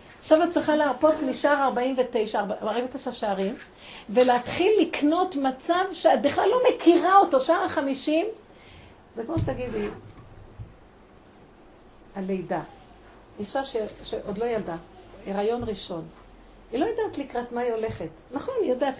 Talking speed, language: 125 wpm, Hebrew